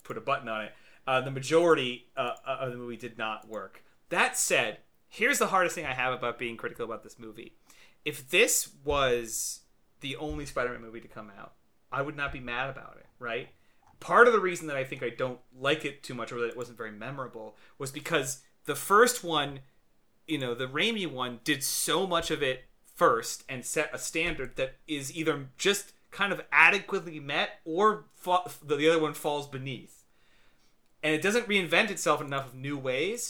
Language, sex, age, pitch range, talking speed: English, male, 30-49, 130-160 Hz, 200 wpm